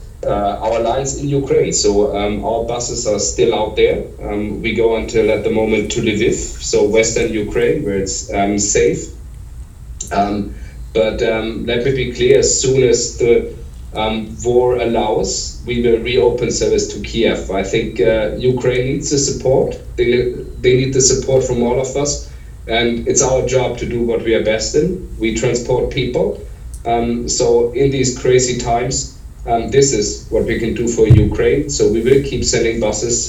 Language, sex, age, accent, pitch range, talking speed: English, male, 30-49, German, 105-125 Hz, 180 wpm